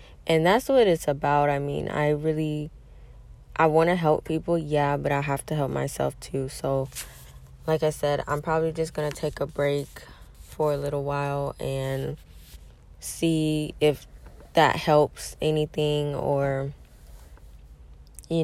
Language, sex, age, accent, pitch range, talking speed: English, female, 10-29, American, 115-155 Hz, 150 wpm